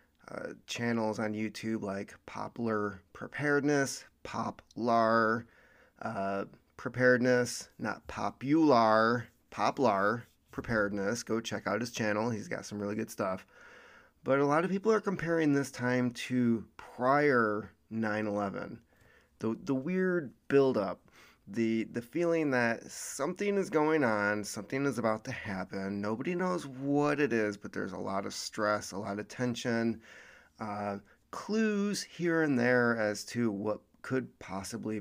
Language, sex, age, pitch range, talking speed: English, male, 30-49, 105-140 Hz, 135 wpm